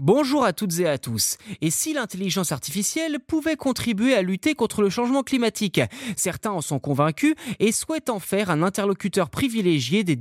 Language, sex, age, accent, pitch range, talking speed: French, male, 20-39, French, 150-225 Hz, 175 wpm